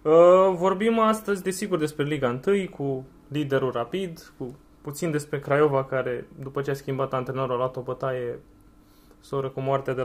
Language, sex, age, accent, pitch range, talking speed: Romanian, male, 20-39, native, 135-180 Hz, 160 wpm